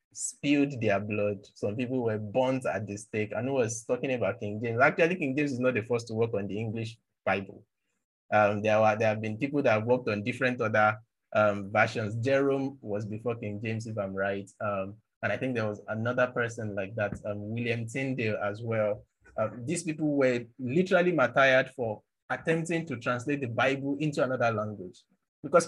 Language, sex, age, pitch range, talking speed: English, male, 20-39, 110-135 Hz, 195 wpm